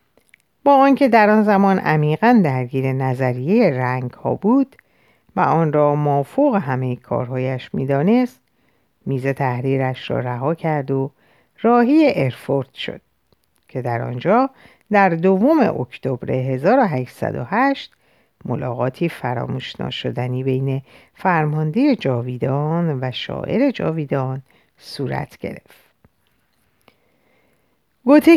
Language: Persian